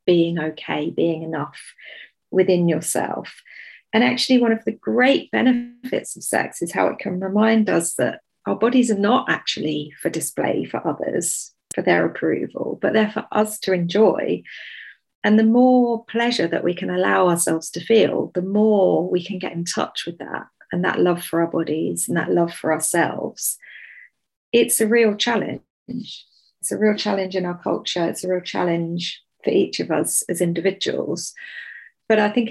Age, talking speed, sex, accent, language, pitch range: 40-59, 175 wpm, female, British, English, 175-230 Hz